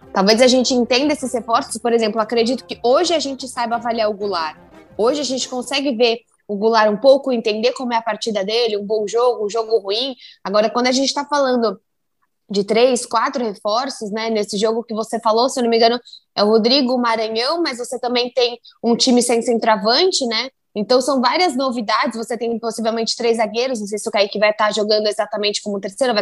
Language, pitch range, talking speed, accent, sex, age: Portuguese, 215-250 Hz, 215 wpm, Brazilian, female, 10-29